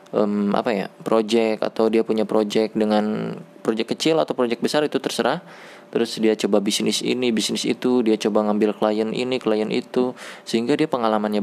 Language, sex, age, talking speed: Indonesian, male, 20-39, 175 wpm